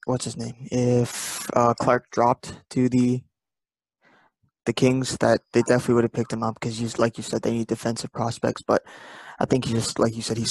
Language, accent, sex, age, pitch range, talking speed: English, American, male, 20-39, 115-130 Hz, 205 wpm